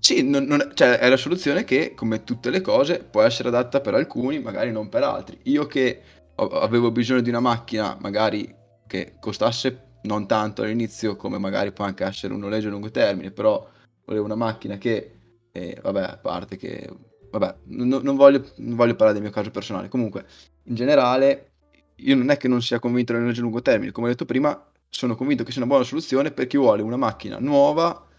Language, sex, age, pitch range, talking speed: Italian, male, 20-39, 105-125 Hz, 210 wpm